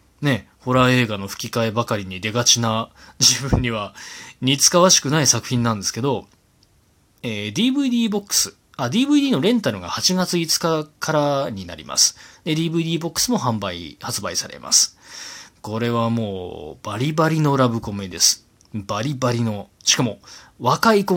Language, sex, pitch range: Japanese, male, 110-165 Hz